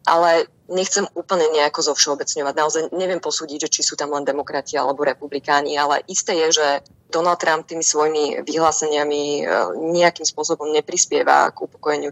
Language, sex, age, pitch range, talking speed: Slovak, female, 20-39, 145-165 Hz, 150 wpm